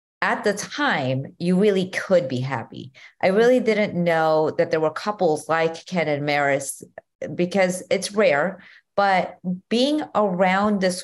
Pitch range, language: 155-195 Hz, English